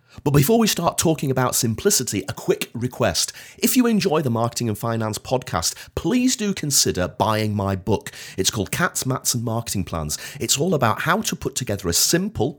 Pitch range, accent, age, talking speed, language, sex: 95-160 Hz, British, 40-59, 190 wpm, English, male